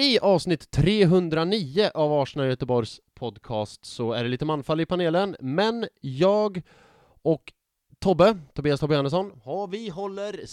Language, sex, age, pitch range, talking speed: English, male, 20-39, 120-165 Hz, 130 wpm